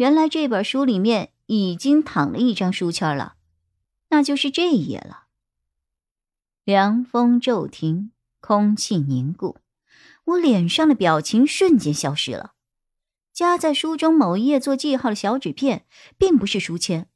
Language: Chinese